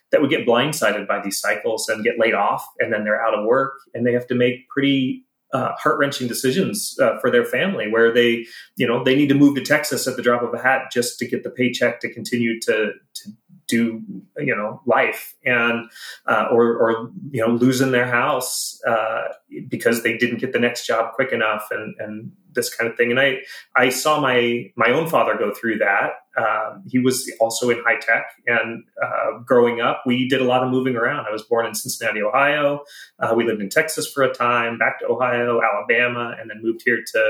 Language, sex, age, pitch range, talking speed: English, male, 30-49, 115-130 Hz, 220 wpm